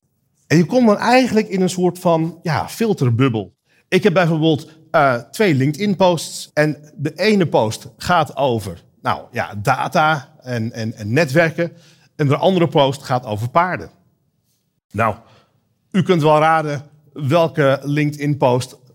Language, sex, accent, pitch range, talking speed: Dutch, male, Dutch, 125-165 Hz, 140 wpm